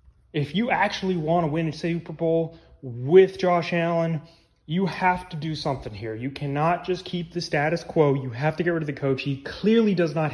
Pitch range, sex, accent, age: 145-205 Hz, male, American, 30-49